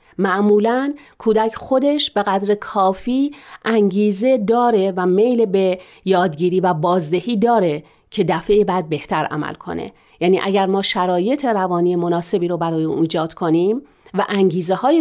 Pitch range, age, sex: 185-240 Hz, 40-59, female